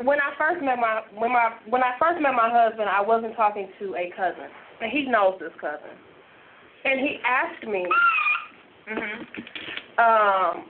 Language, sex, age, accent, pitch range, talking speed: English, female, 20-39, American, 205-280 Hz, 170 wpm